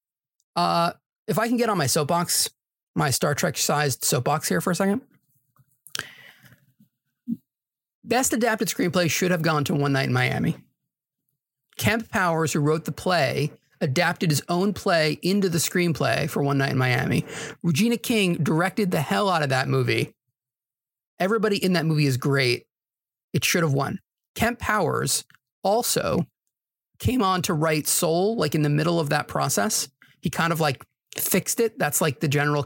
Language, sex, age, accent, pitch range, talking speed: English, male, 30-49, American, 140-180 Hz, 165 wpm